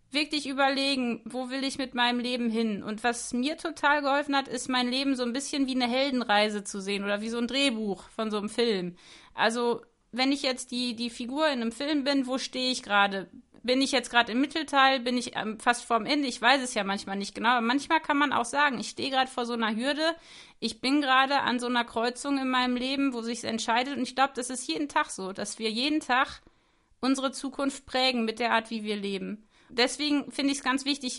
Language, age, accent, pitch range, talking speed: German, 30-49, German, 235-275 Hz, 235 wpm